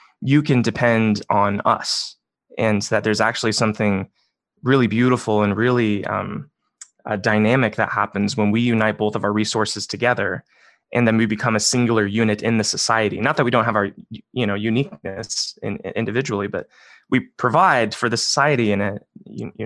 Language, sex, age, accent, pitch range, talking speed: English, male, 20-39, American, 105-130 Hz, 175 wpm